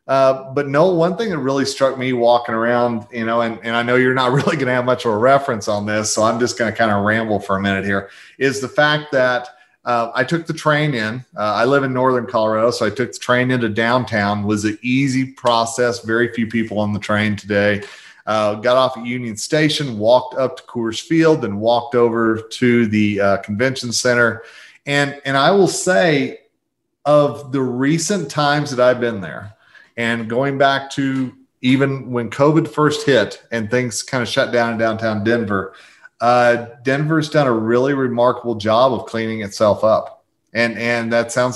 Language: English